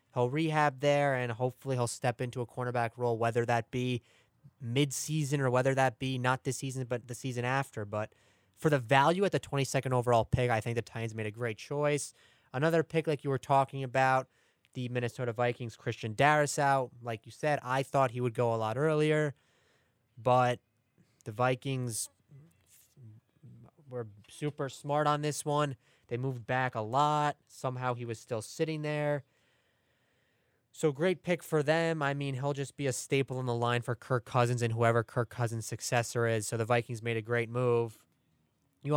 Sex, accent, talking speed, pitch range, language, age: male, American, 185 wpm, 120-145 Hz, English, 20-39